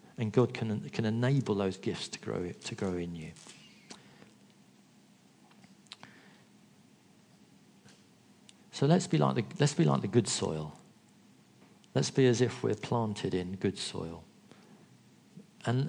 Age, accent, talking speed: 50-69, British, 130 wpm